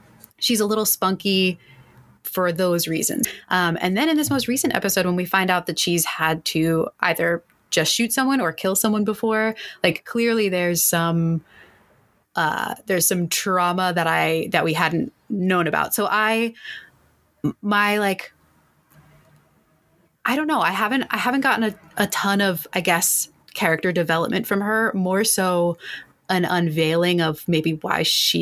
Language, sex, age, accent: English, female, 20-39, American